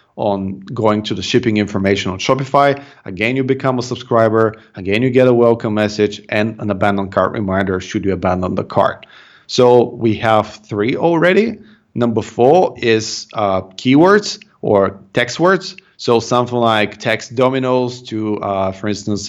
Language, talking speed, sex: English, 160 wpm, male